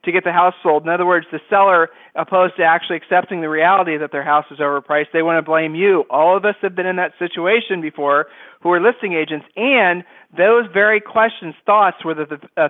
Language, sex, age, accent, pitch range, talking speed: English, male, 50-69, American, 155-185 Hz, 225 wpm